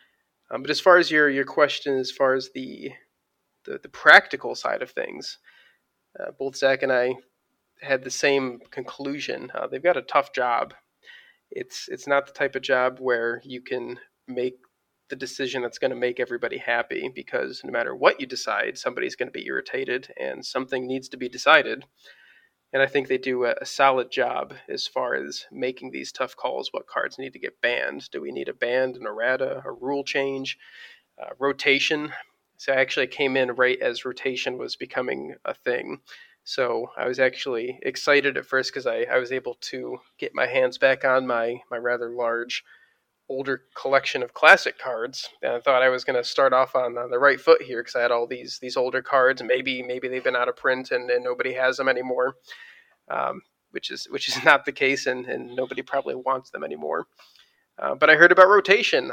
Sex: male